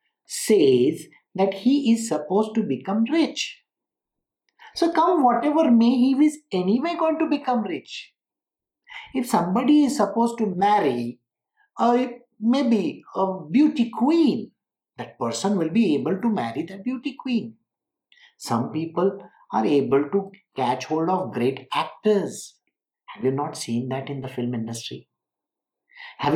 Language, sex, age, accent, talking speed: English, male, 60-79, Indian, 135 wpm